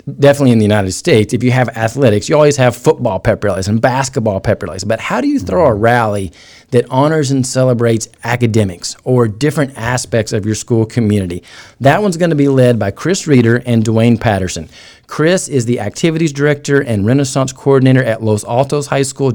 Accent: American